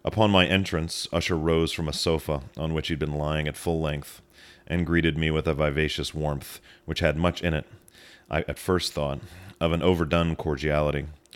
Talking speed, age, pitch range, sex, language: 195 wpm, 30-49, 75-85 Hz, male, English